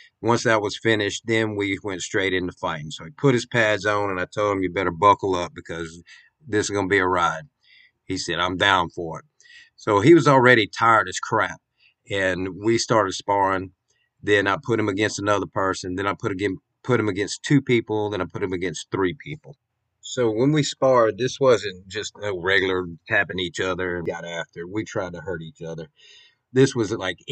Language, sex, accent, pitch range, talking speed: English, male, American, 95-125 Hz, 210 wpm